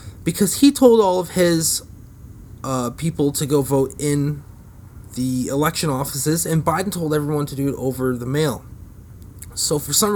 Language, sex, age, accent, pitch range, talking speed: English, male, 20-39, American, 105-165 Hz, 165 wpm